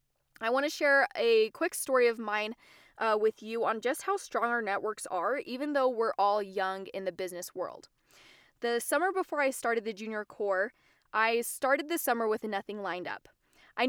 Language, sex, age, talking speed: English, female, 10-29, 195 wpm